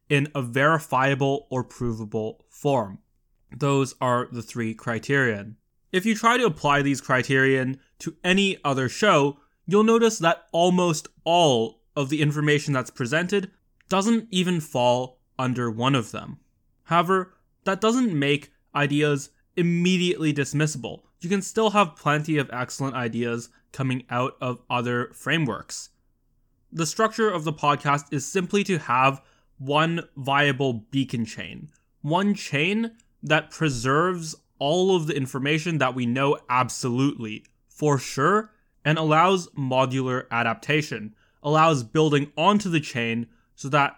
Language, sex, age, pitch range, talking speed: English, male, 20-39, 125-170 Hz, 130 wpm